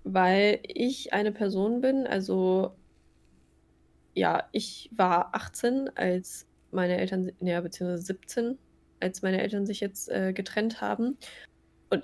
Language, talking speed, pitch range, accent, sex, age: German, 125 wpm, 180-220 Hz, German, female, 20-39